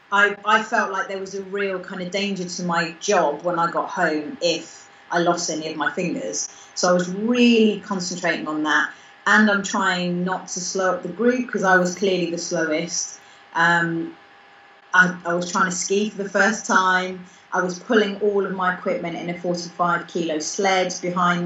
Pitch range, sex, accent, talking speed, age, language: 170-195 Hz, female, British, 200 wpm, 30-49, English